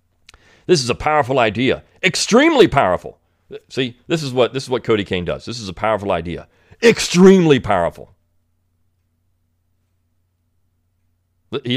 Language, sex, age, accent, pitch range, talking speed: English, male, 40-59, American, 95-150 Hz, 125 wpm